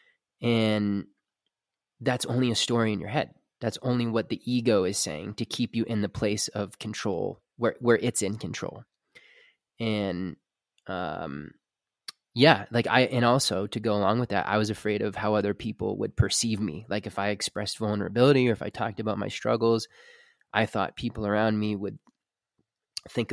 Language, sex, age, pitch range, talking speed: English, male, 20-39, 105-120 Hz, 175 wpm